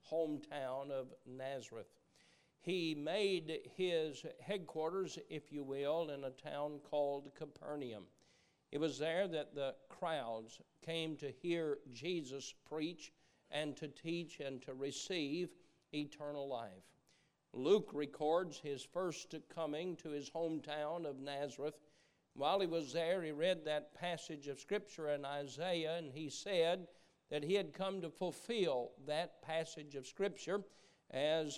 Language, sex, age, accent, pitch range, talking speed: English, male, 50-69, American, 145-175 Hz, 135 wpm